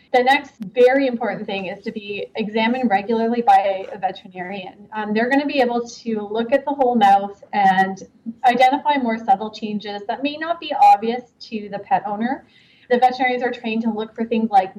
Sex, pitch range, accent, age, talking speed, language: female, 205-250 Hz, American, 20-39, 195 wpm, English